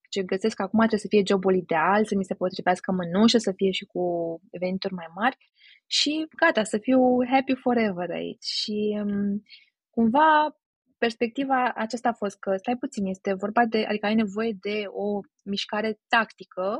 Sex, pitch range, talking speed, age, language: female, 200-250 Hz, 165 wpm, 20-39, Romanian